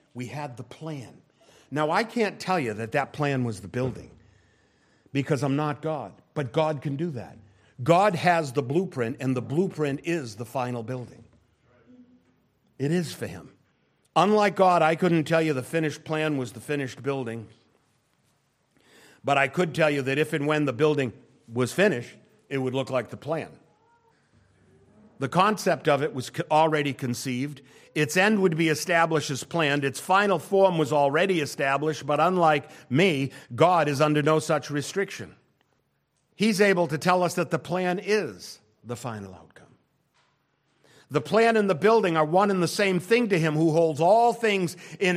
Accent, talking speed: American, 175 wpm